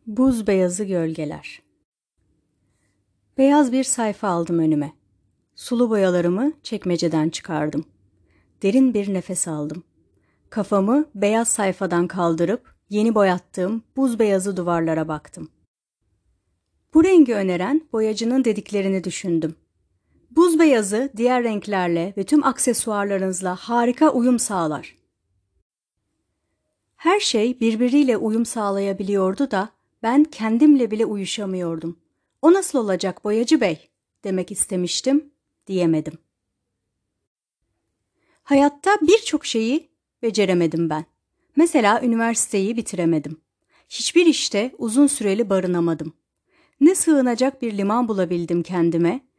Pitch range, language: 170-250 Hz, Turkish